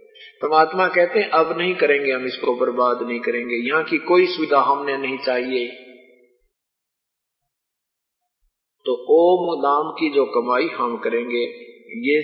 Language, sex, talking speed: Hindi, male, 135 wpm